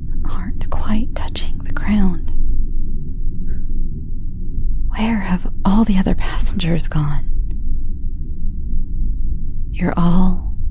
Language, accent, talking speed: English, American, 80 wpm